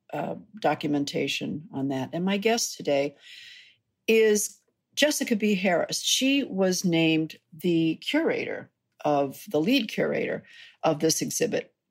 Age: 50-69